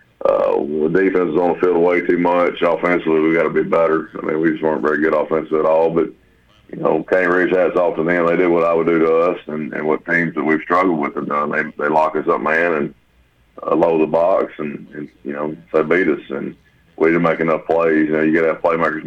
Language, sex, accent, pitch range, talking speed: English, male, American, 75-85 Hz, 260 wpm